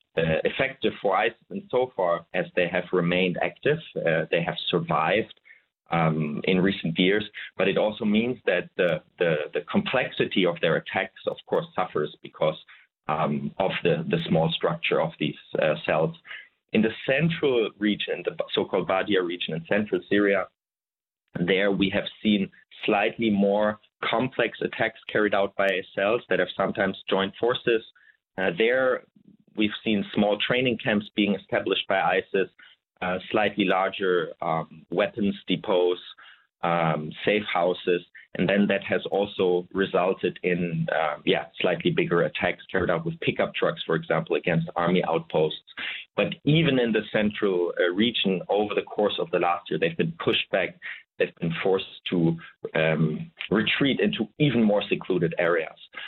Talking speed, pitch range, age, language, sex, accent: 155 wpm, 90-130 Hz, 30-49, Danish, male, German